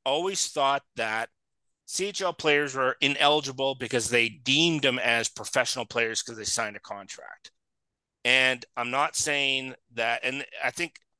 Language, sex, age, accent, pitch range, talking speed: English, male, 30-49, American, 120-155 Hz, 145 wpm